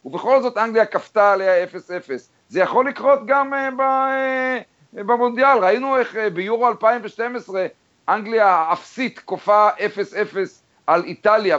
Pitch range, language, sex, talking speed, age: 170-225 Hz, Hebrew, male, 140 wpm, 50-69